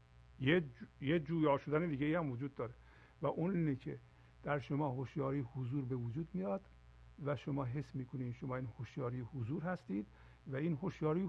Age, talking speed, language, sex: 50-69, 170 wpm, Persian, male